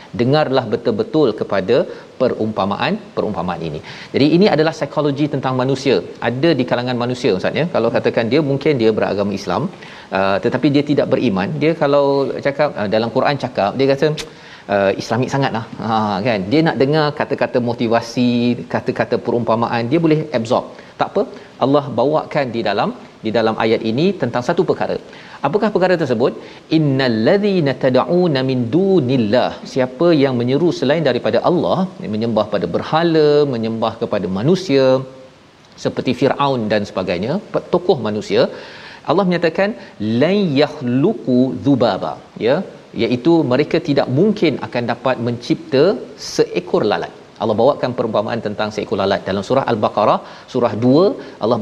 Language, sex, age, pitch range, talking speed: Malayalam, male, 40-59, 120-155 Hz, 140 wpm